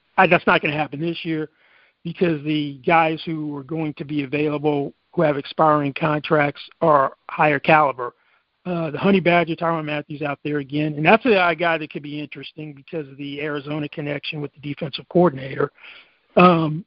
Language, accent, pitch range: English, American, 150-170 Hz